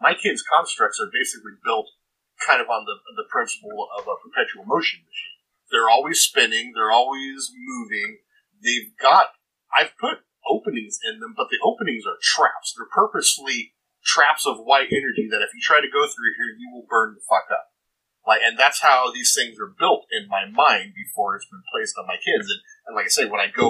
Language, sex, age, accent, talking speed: English, male, 40-59, American, 205 wpm